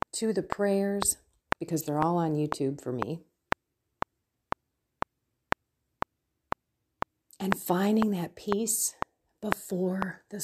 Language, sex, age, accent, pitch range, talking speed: English, female, 40-59, American, 160-200 Hz, 90 wpm